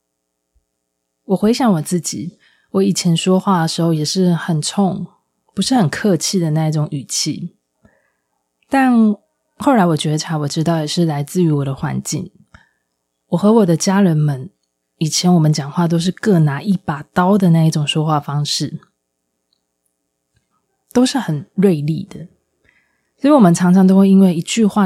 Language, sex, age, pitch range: Chinese, female, 20-39, 150-195 Hz